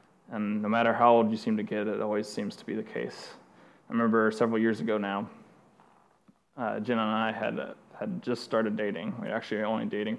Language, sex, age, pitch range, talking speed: English, male, 20-39, 110-120 Hz, 220 wpm